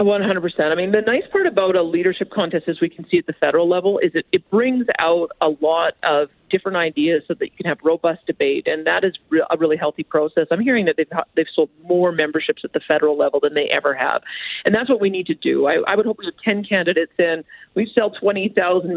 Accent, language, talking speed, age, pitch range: American, English, 240 wpm, 40-59, 160-210 Hz